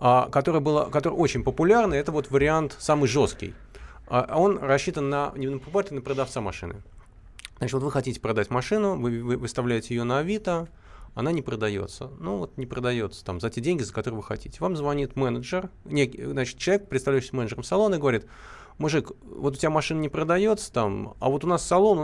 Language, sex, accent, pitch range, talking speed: Russian, male, native, 115-155 Hz, 190 wpm